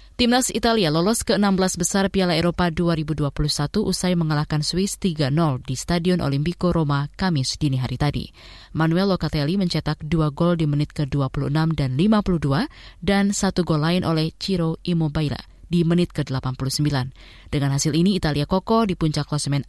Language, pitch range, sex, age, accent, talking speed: Indonesian, 150-190 Hz, female, 20-39, native, 150 wpm